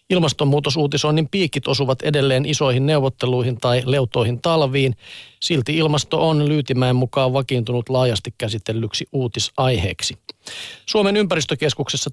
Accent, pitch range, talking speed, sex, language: native, 125-155 Hz, 100 wpm, male, Finnish